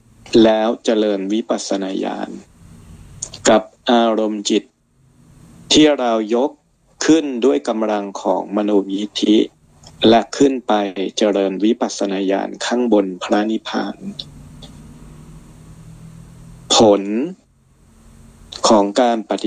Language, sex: Thai, male